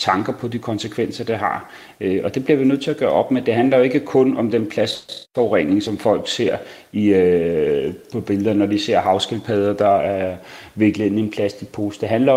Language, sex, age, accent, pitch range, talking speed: Danish, male, 30-49, native, 110-130 Hz, 220 wpm